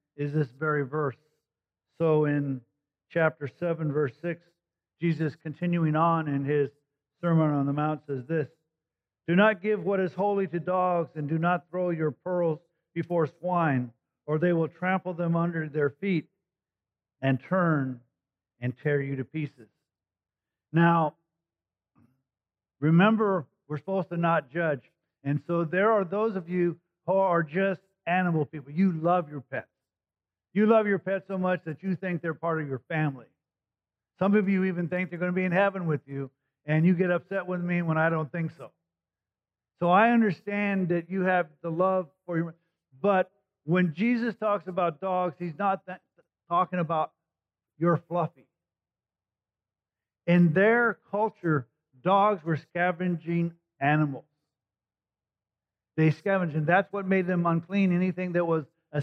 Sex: male